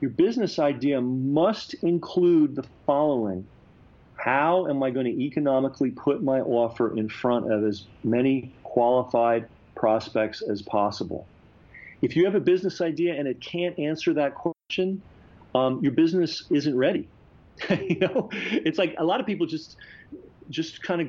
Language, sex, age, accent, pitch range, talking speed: English, male, 40-59, American, 125-160 Hz, 155 wpm